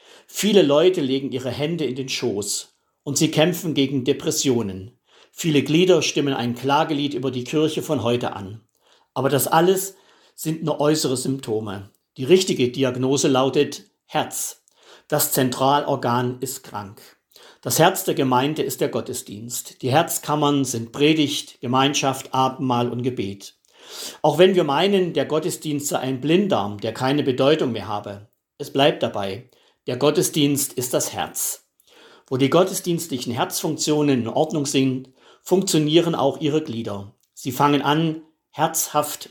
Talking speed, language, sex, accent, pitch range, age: 140 wpm, German, male, German, 130-160 Hz, 50-69